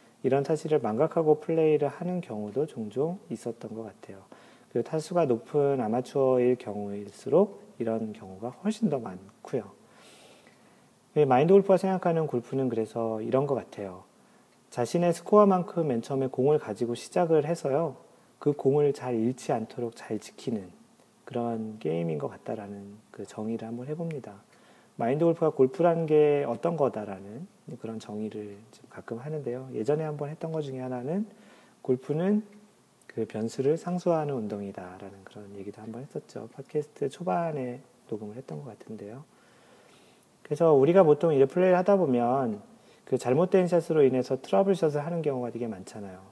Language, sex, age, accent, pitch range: Korean, male, 40-59, native, 110-160 Hz